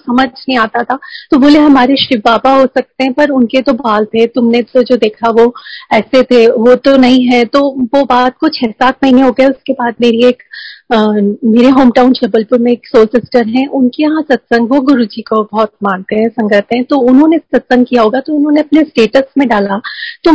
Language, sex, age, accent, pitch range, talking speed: Hindi, female, 40-59, native, 240-280 Hz, 160 wpm